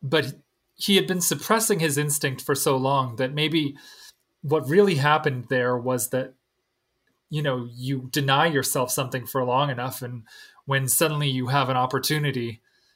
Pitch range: 135-160 Hz